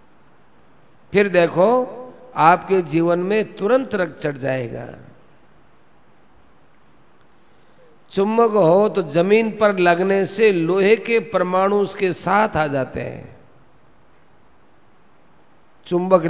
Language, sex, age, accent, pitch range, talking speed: Hindi, male, 50-69, native, 165-205 Hz, 90 wpm